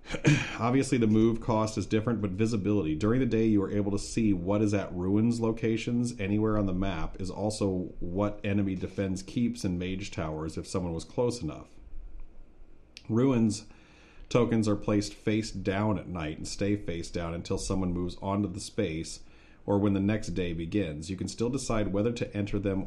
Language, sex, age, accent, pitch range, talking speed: English, male, 40-59, American, 85-105 Hz, 185 wpm